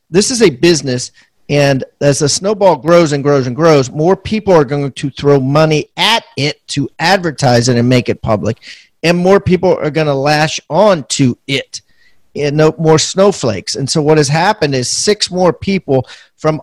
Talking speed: 200 wpm